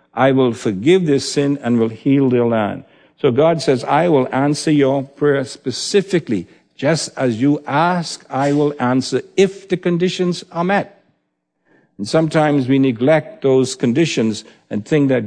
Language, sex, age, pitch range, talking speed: English, male, 60-79, 115-145 Hz, 155 wpm